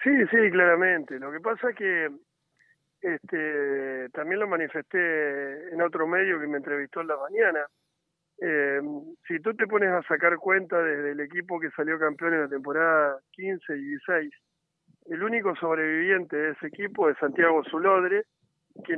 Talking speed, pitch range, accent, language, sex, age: 160 wpm, 155-220 Hz, Argentinian, Spanish, male, 50-69